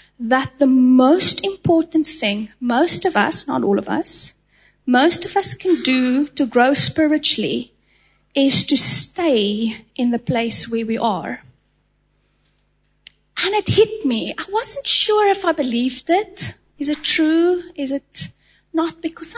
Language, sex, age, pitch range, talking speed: English, female, 30-49, 250-325 Hz, 145 wpm